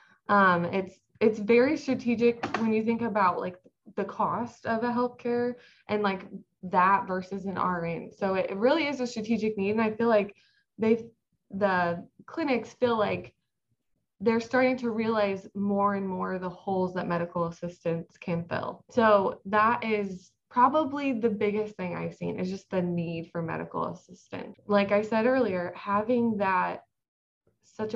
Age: 20-39